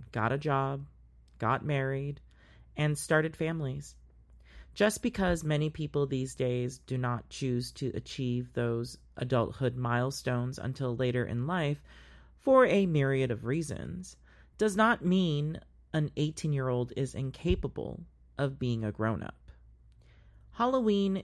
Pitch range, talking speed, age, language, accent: 120-150 Hz, 120 wpm, 40-59, English, American